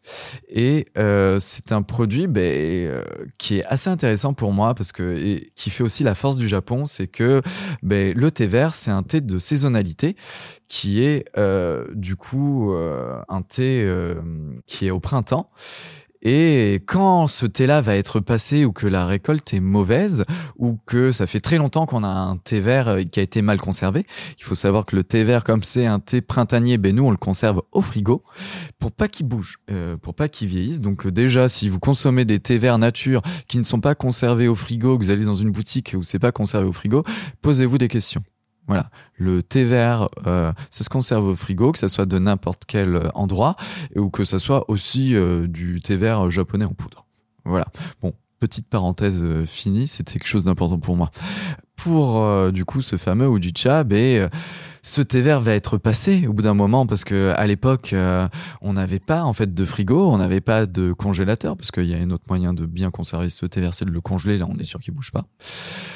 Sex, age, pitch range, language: male, 20-39, 95-130 Hz, French